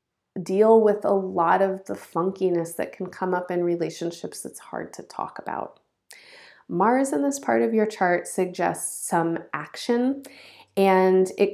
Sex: female